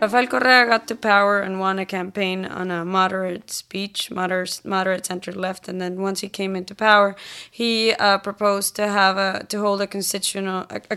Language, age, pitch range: English, 20-39, 190-210 Hz